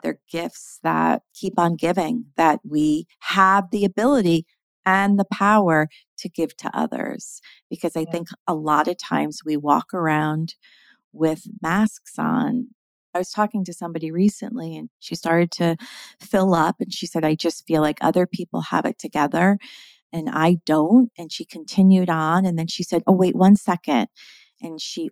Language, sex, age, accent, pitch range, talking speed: English, female, 30-49, American, 185-285 Hz, 170 wpm